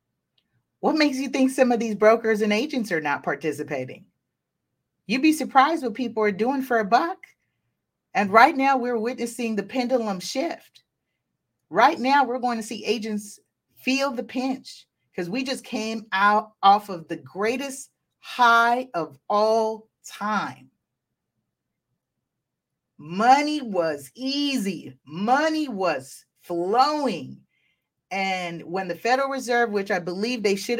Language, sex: English, female